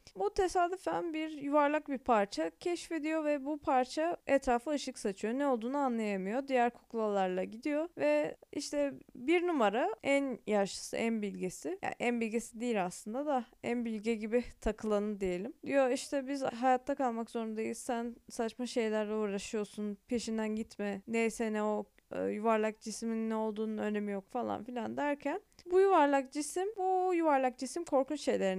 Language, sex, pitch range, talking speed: Turkish, female, 225-305 Hz, 145 wpm